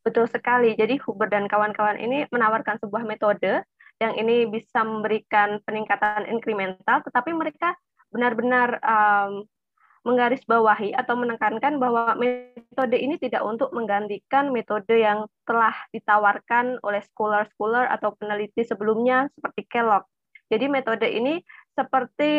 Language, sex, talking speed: Indonesian, female, 120 wpm